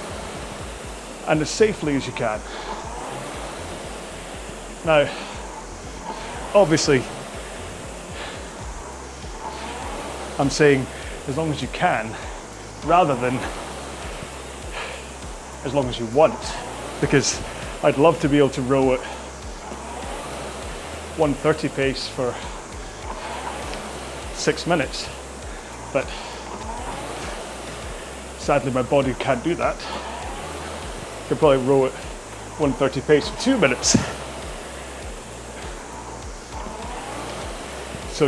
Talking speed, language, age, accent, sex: 85 wpm, English, 30-49, British, male